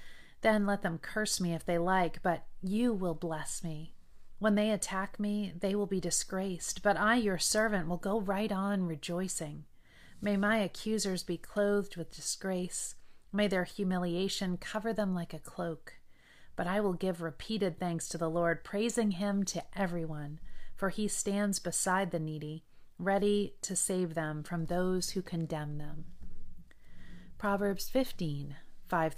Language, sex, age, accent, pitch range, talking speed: English, female, 40-59, American, 170-205 Hz, 155 wpm